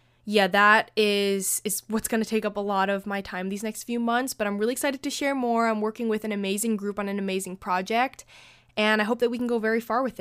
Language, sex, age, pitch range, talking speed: English, female, 10-29, 190-225 Hz, 265 wpm